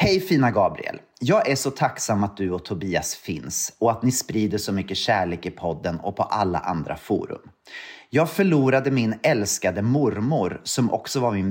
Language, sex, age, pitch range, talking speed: Swedish, male, 30-49, 100-150 Hz, 180 wpm